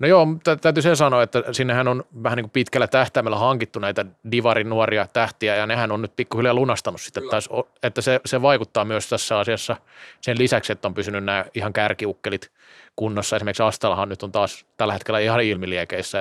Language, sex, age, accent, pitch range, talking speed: Finnish, male, 30-49, native, 110-125 Hz, 175 wpm